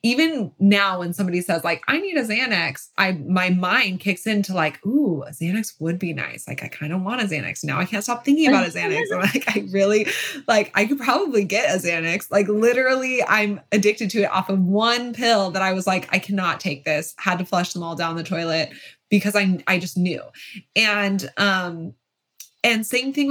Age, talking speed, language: 20-39, 215 wpm, English